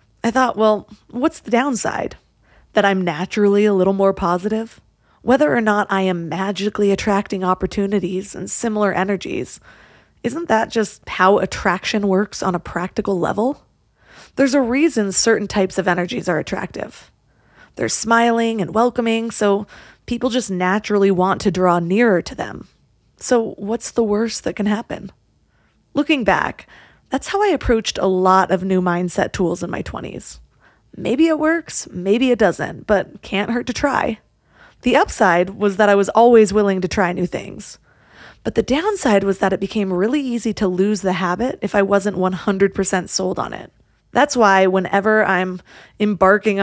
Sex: female